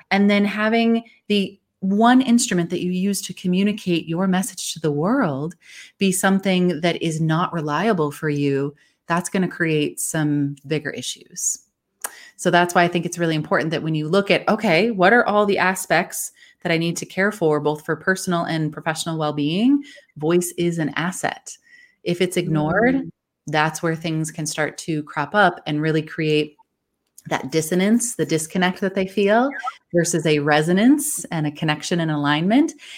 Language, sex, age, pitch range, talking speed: English, female, 30-49, 155-195 Hz, 175 wpm